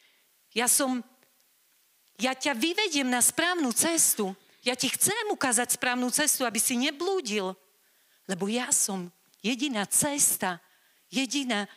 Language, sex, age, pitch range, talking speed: Slovak, female, 40-59, 185-265 Hz, 115 wpm